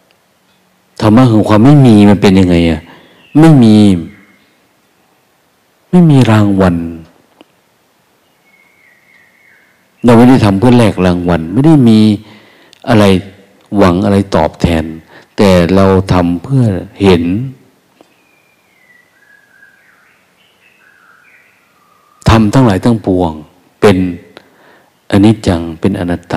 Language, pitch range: Thai, 90-120 Hz